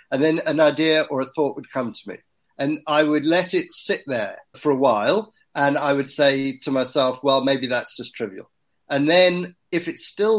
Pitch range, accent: 135-170 Hz, British